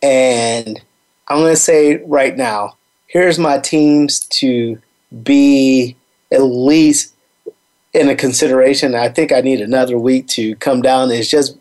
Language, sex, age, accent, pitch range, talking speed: English, male, 30-49, American, 120-145 Hz, 145 wpm